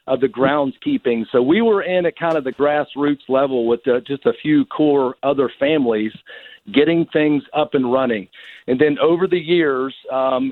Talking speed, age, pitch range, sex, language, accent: 185 wpm, 50-69, 130-160 Hz, male, English, American